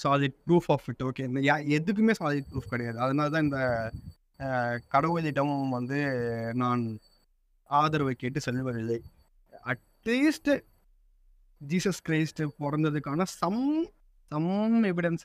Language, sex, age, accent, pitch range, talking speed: Tamil, male, 20-39, native, 125-175 Hz, 100 wpm